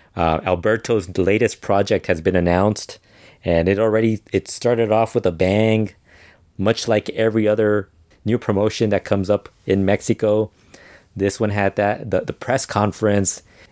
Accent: American